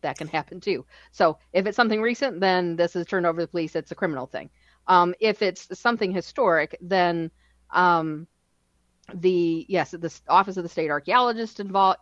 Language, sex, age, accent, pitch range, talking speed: English, female, 40-59, American, 160-190 Hz, 185 wpm